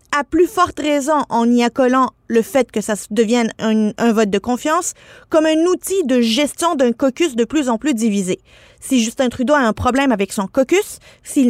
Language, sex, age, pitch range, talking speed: French, female, 30-49, 225-275 Hz, 205 wpm